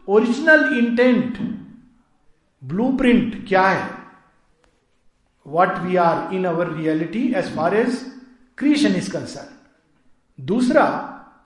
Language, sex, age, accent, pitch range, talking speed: Hindi, male, 50-69, native, 190-260 Hz, 95 wpm